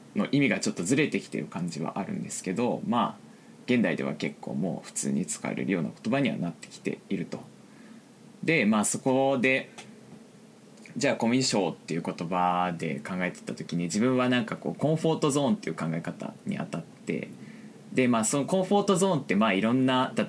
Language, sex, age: Japanese, male, 20-39